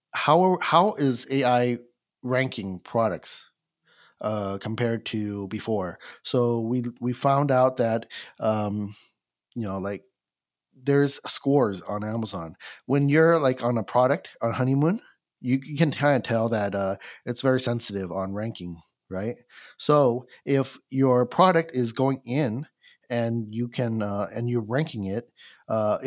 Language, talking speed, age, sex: English, 140 wpm, 30-49, male